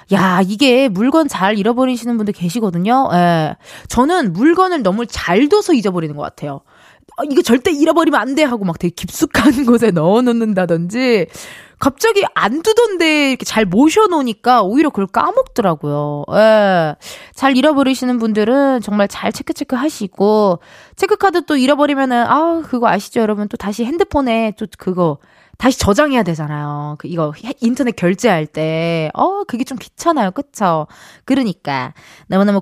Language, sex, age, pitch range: Korean, female, 20-39, 195-300 Hz